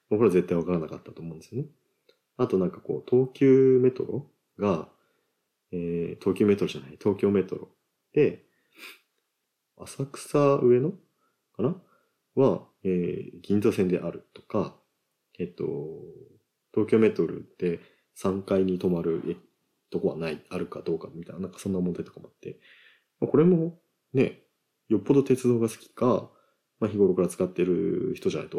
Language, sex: Japanese, male